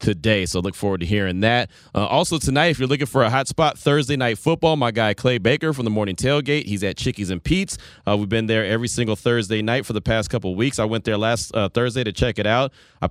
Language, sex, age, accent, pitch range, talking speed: English, male, 30-49, American, 95-125 Hz, 265 wpm